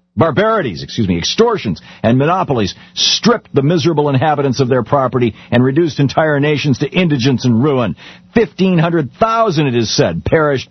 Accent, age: American, 50-69